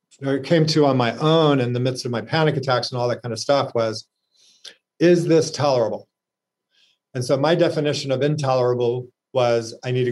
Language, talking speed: English, 195 wpm